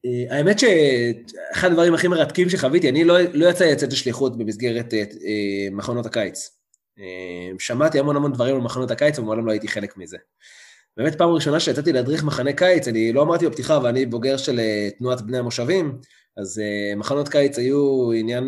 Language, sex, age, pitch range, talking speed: Hebrew, male, 20-39, 110-165 Hz, 175 wpm